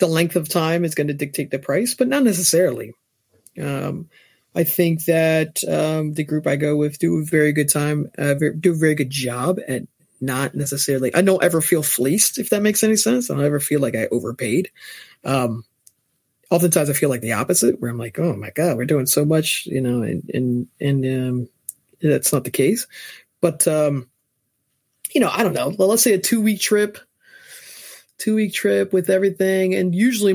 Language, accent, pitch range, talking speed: English, American, 140-180 Hz, 200 wpm